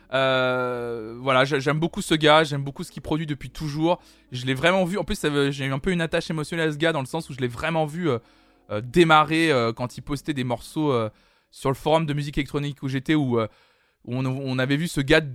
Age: 20-39